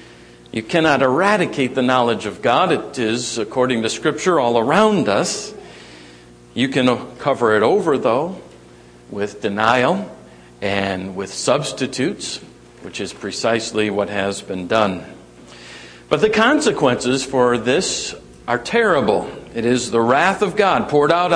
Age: 50-69